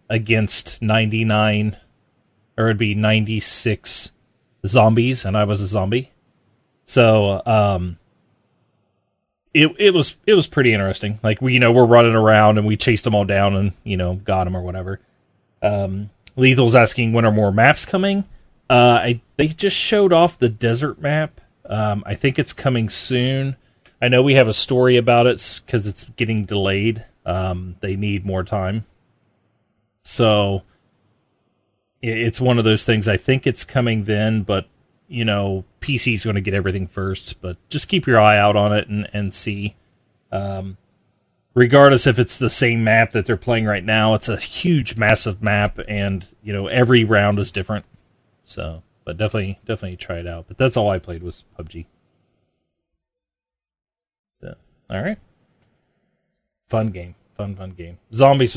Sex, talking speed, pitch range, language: male, 165 wpm, 100-120 Hz, English